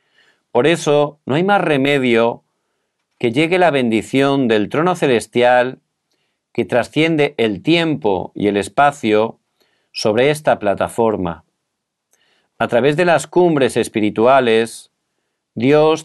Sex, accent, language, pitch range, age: male, Spanish, Korean, 110-145 Hz, 40-59